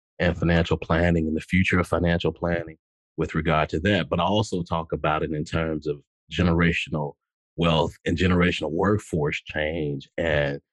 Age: 40-59